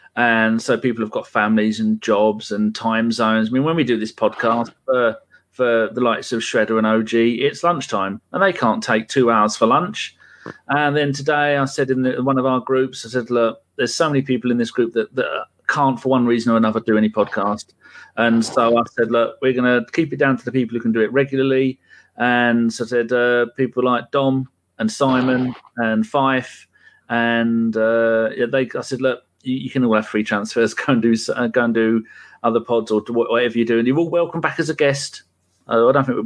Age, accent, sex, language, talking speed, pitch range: 40-59, British, male, English, 225 wpm, 115-130 Hz